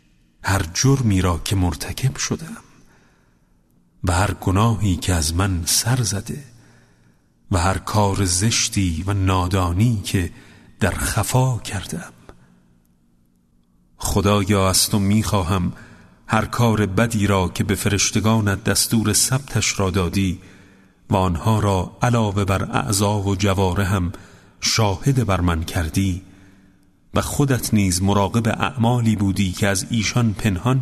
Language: Persian